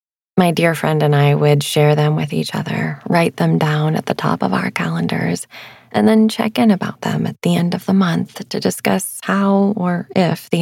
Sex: female